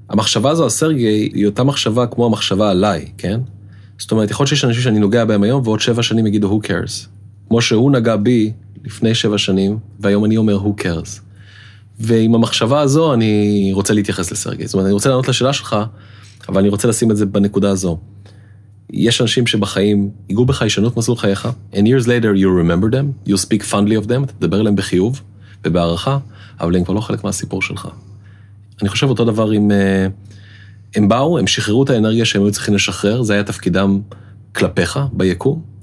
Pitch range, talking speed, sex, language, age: 100-115 Hz, 170 wpm, male, Hebrew, 30-49